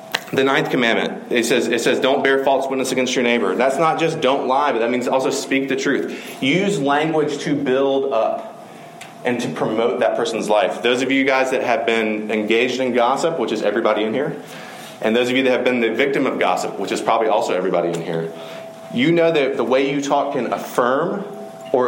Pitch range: 120-150 Hz